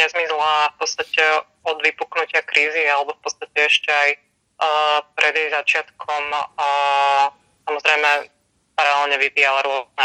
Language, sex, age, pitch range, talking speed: Slovak, female, 20-39, 140-155 Hz, 115 wpm